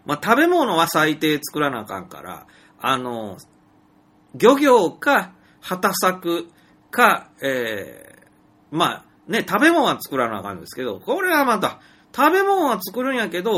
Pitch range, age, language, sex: 130-195 Hz, 40-59, Japanese, male